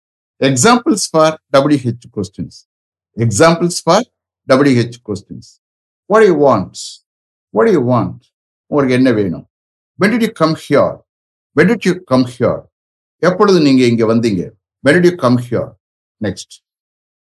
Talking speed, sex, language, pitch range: 110 wpm, male, English, 105-165 Hz